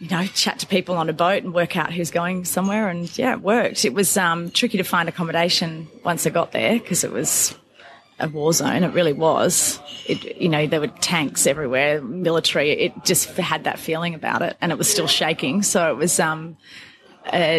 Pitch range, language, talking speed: 155-180 Hz, English, 215 wpm